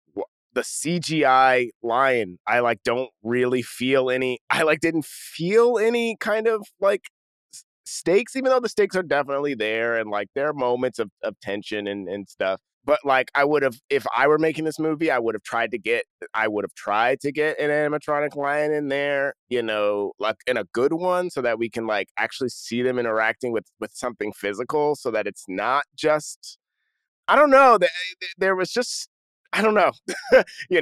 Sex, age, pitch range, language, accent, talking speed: male, 30-49, 110-160 Hz, English, American, 195 wpm